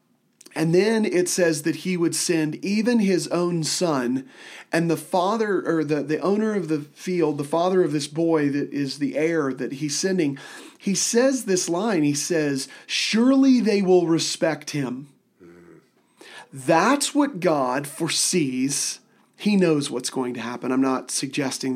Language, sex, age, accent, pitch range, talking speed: English, male, 40-59, American, 145-185 Hz, 160 wpm